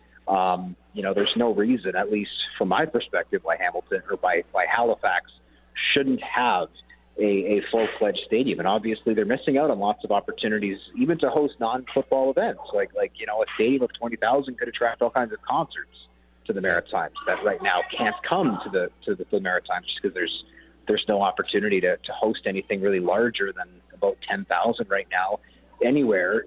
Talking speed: 190 wpm